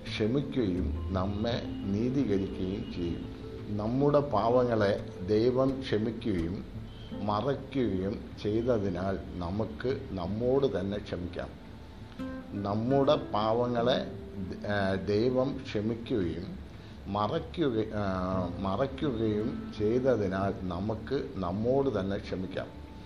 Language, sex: Malayalam, male